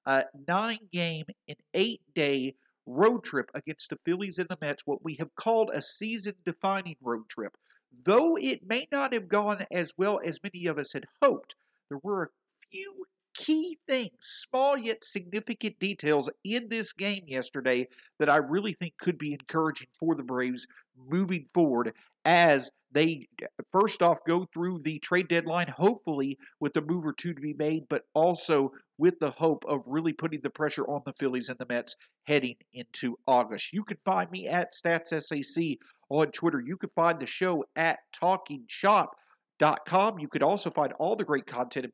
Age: 50-69